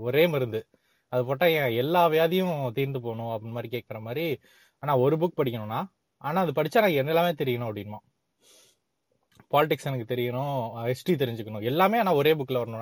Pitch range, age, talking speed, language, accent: 125-170 Hz, 20-39, 105 wpm, Tamil, native